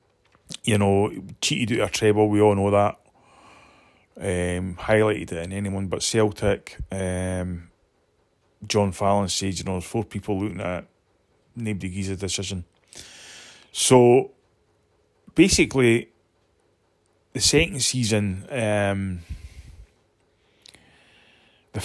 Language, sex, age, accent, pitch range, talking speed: English, male, 30-49, British, 95-115 Hz, 110 wpm